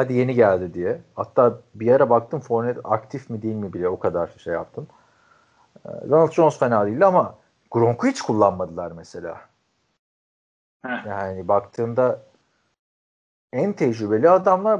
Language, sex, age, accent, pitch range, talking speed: Turkish, male, 40-59, native, 110-150 Hz, 120 wpm